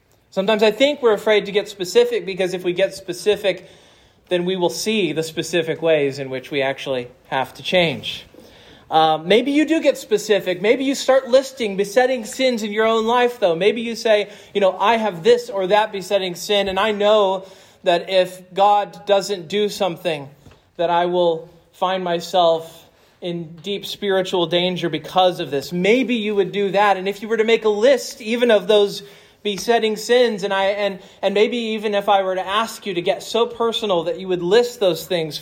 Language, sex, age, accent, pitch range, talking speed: English, male, 30-49, American, 170-220 Hz, 195 wpm